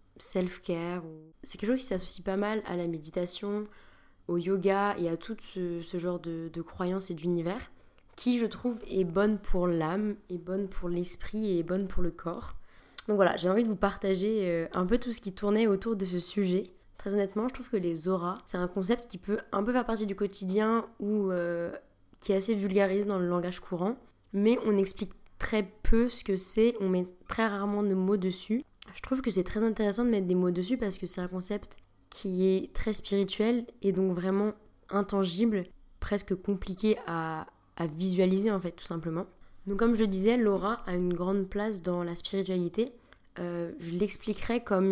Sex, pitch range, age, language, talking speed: female, 180-215 Hz, 20-39, French, 205 wpm